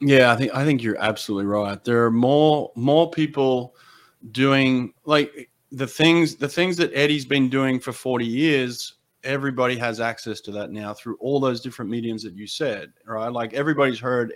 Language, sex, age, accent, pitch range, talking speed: English, male, 30-49, Australian, 115-135 Hz, 185 wpm